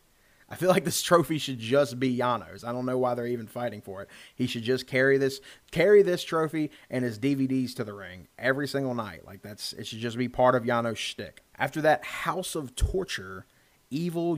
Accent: American